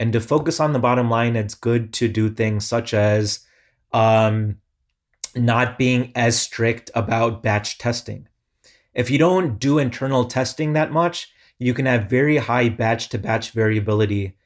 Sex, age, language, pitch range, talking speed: male, 30-49, English, 110-135 Hz, 155 wpm